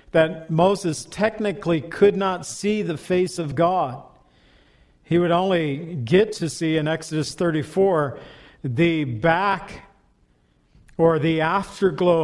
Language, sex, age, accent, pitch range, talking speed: English, male, 50-69, American, 145-180 Hz, 120 wpm